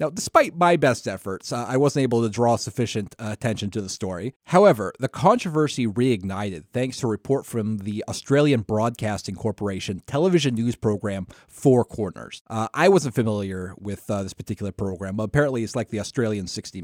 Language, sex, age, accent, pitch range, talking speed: English, male, 30-49, American, 105-135 Hz, 180 wpm